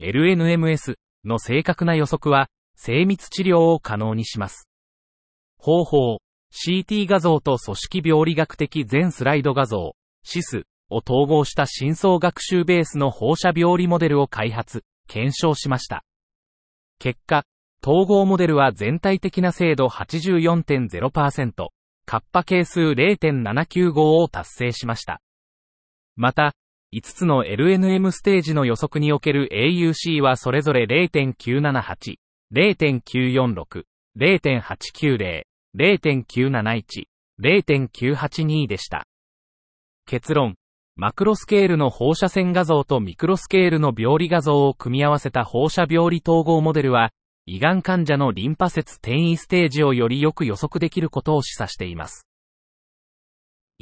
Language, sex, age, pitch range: Japanese, male, 30-49, 120-170 Hz